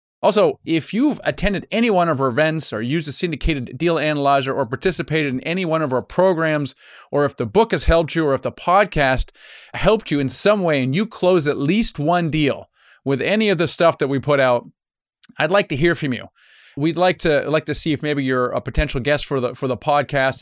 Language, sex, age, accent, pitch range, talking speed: English, male, 30-49, American, 135-170 Hz, 230 wpm